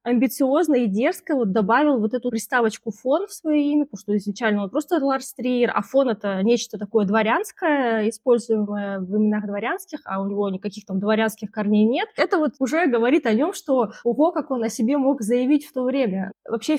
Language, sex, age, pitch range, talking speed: Russian, female, 20-39, 220-275 Hz, 195 wpm